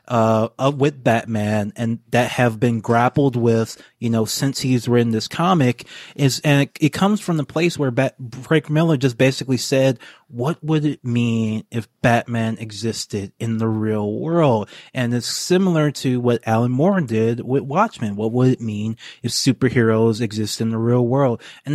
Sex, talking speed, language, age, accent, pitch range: male, 175 wpm, English, 30-49, American, 115-140 Hz